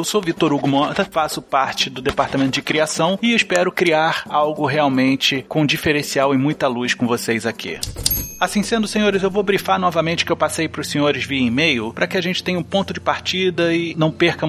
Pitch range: 125-180 Hz